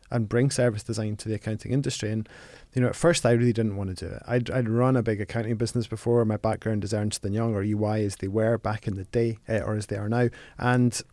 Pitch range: 105-120 Hz